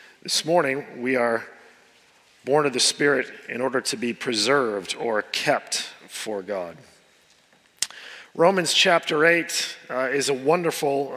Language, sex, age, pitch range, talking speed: English, male, 40-59, 135-175 Hz, 125 wpm